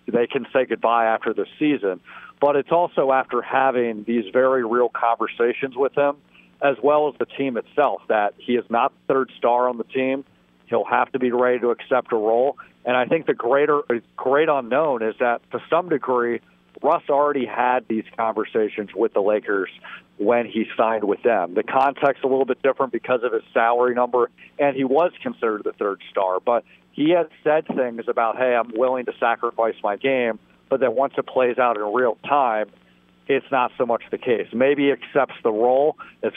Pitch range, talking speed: 115-135 Hz, 195 wpm